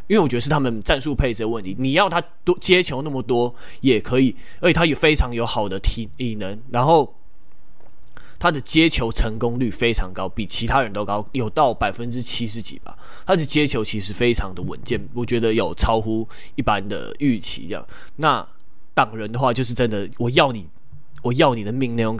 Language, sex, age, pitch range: Chinese, male, 20-39, 110-140 Hz